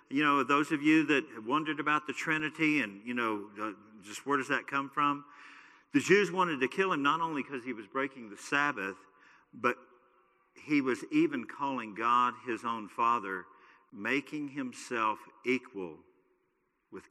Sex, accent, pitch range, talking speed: male, American, 125-150 Hz, 160 wpm